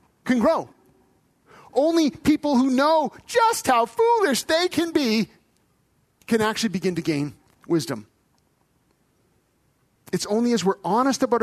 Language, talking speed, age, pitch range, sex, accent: English, 125 wpm, 40-59, 155-240 Hz, male, American